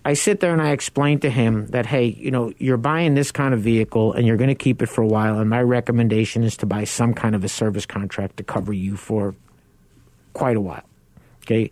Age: 50-69